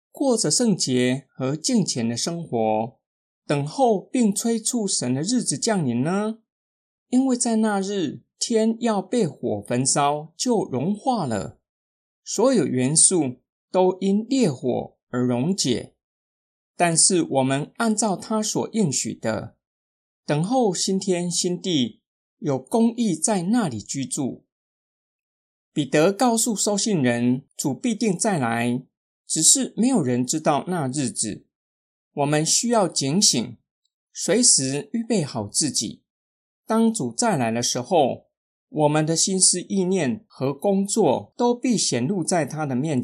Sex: male